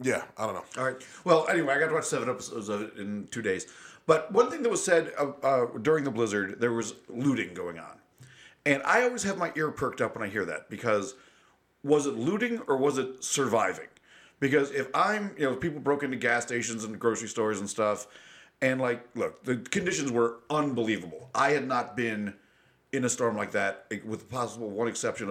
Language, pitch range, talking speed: English, 110-145 Hz, 215 wpm